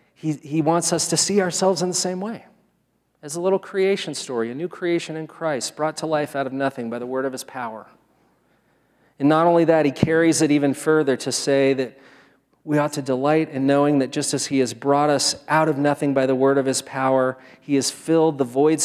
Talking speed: 230 wpm